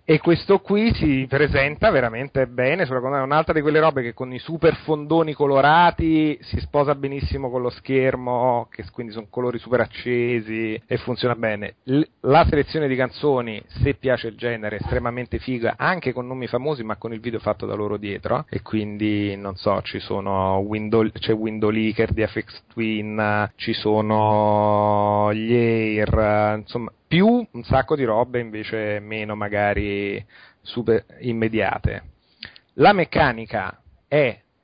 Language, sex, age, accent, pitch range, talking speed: Italian, male, 30-49, native, 110-140 Hz, 155 wpm